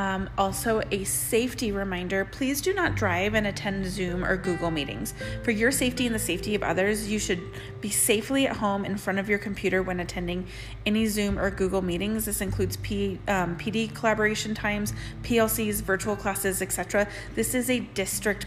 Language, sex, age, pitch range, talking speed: English, female, 30-49, 190-225 Hz, 180 wpm